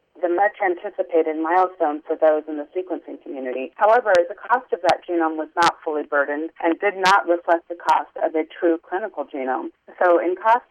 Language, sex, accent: English, female, American